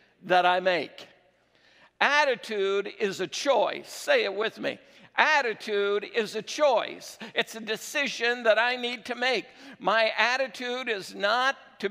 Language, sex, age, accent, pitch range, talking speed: English, male, 60-79, American, 205-260 Hz, 140 wpm